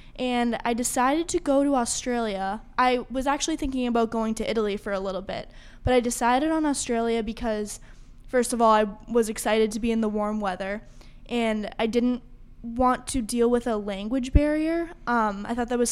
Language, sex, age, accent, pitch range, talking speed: English, female, 10-29, American, 215-240 Hz, 195 wpm